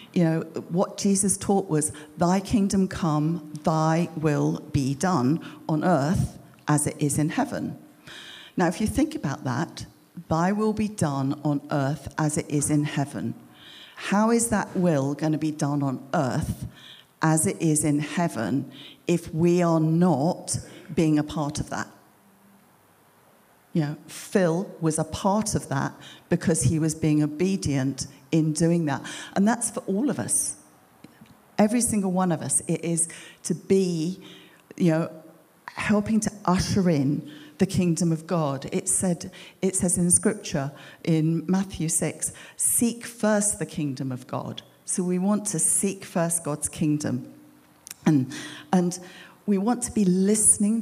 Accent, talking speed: British, 155 wpm